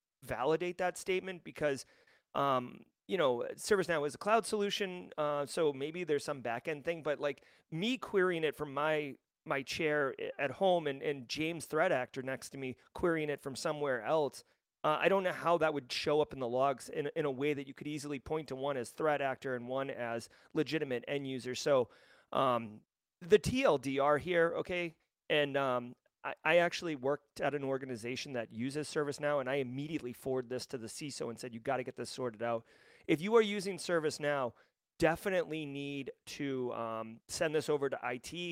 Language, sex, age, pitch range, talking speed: English, male, 30-49, 130-160 Hz, 195 wpm